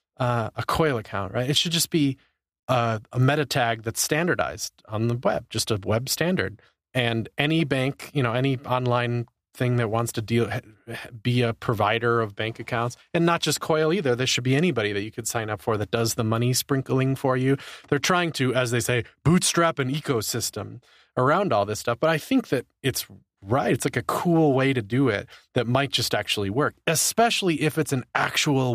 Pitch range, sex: 110-150 Hz, male